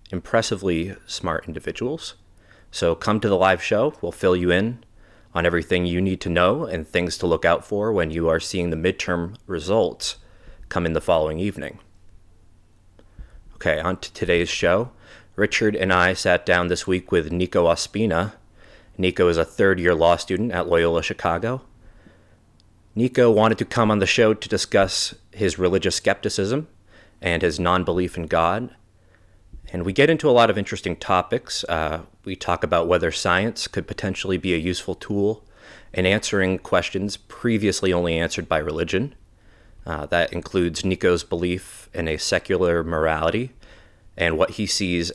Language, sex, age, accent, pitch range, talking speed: English, male, 30-49, American, 85-105 Hz, 160 wpm